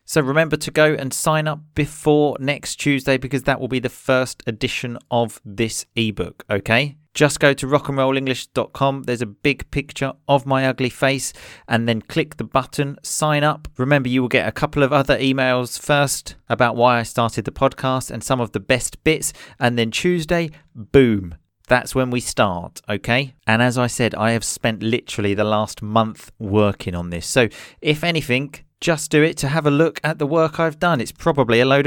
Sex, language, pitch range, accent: male, English, 115-145 Hz, British